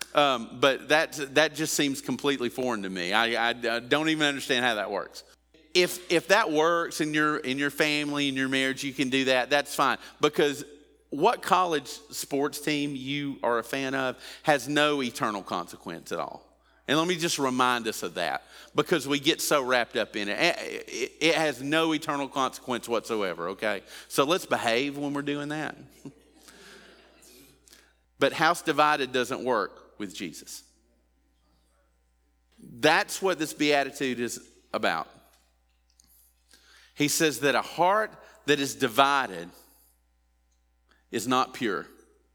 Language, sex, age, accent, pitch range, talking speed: English, male, 40-59, American, 115-150 Hz, 155 wpm